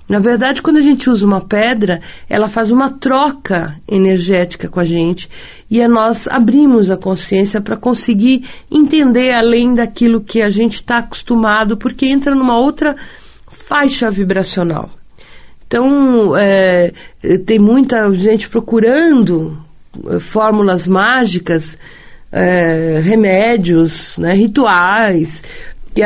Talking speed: 110 wpm